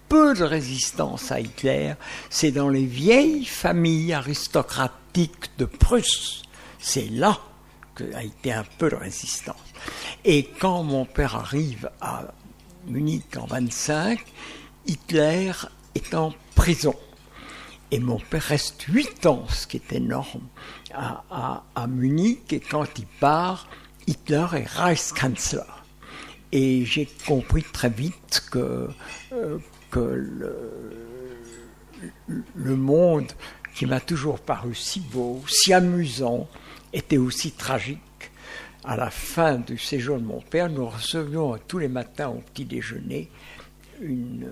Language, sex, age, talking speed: French, male, 60-79, 130 wpm